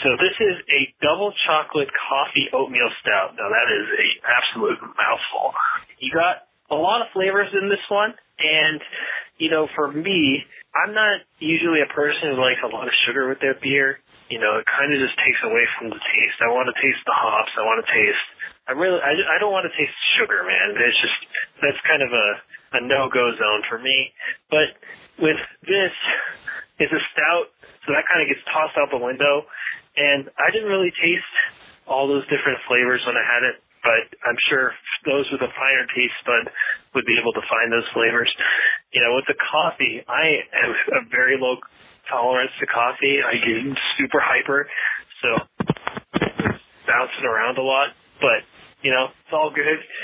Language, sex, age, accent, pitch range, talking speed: English, male, 30-49, American, 135-185 Hz, 190 wpm